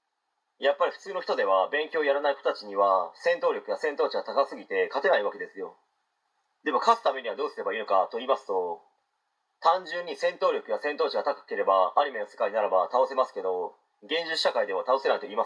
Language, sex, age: Japanese, male, 30-49